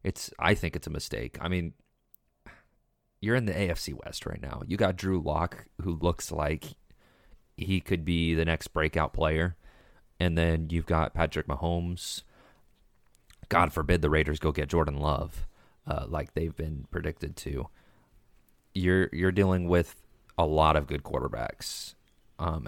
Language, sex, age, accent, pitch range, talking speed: English, male, 30-49, American, 80-95 Hz, 155 wpm